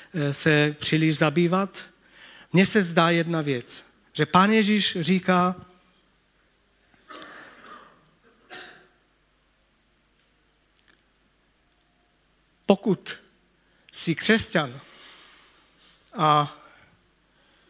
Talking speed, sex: 55 wpm, male